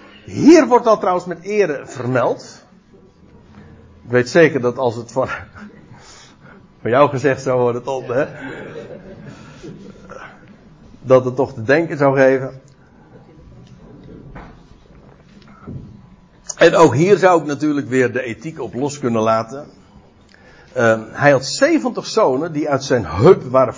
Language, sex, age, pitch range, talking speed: Dutch, male, 60-79, 115-150 Hz, 130 wpm